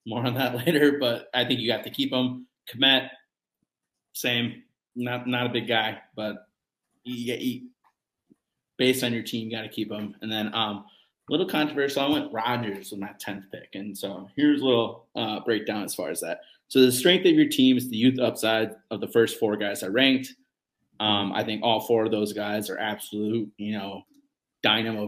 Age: 30-49